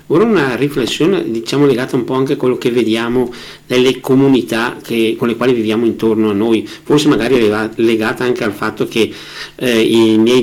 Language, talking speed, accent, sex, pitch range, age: Italian, 190 wpm, native, male, 115-140 Hz, 50-69